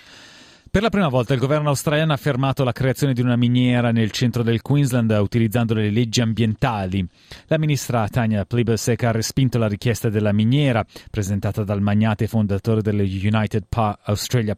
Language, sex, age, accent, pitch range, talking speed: Italian, male, 30-49, native, 105-125 Hz, 160 wpm